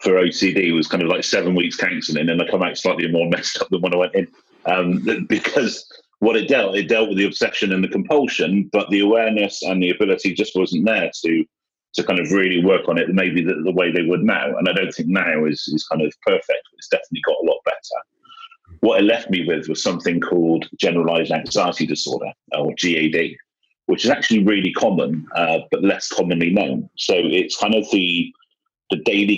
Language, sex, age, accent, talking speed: English, male, 40-59, British, 215 wpm